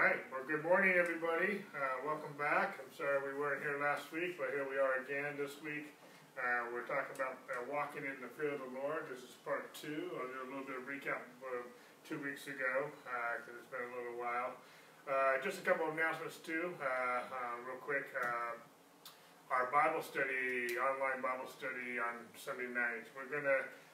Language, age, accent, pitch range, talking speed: English, 30-49, American, 120-140 Hz, 200 wpm